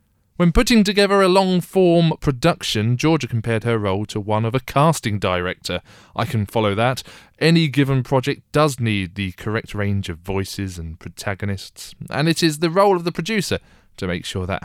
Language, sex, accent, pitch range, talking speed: English, male, British, 100-140 Hz, 180 wpm